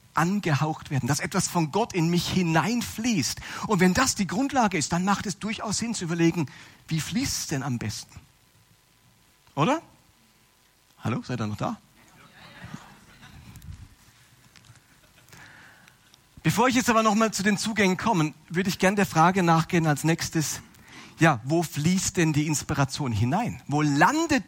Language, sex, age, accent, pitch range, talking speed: German, male, 40-59, German, 135-190 Hz, 145 wpm